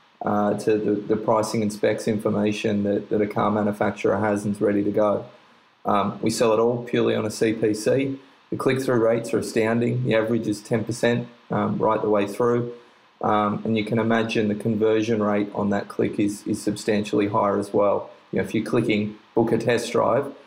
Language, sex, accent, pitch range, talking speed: English, male, Australian, 105-115 Hz, 200 wpm